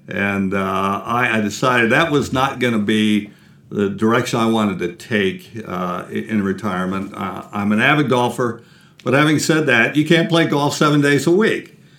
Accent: American